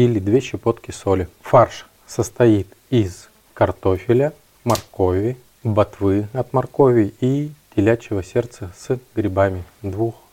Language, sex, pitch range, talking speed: Russian, male, 100-120 Hz, 105 wpm